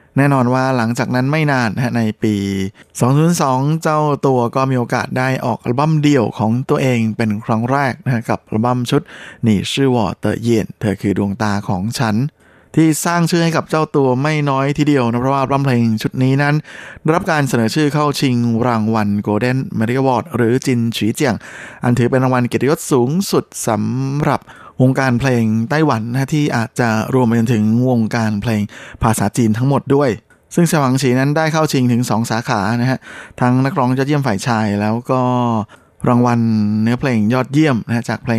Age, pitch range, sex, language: 20-39, 110-135 Hz, male, Thai